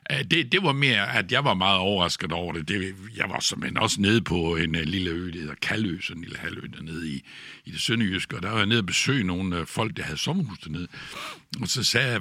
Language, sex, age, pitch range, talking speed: Danish, male, 60-79, 95-135 Hz, 240 wpm